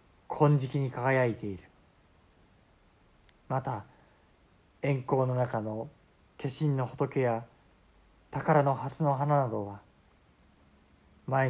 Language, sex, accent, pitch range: Japanese, male, native, 100-130 Hz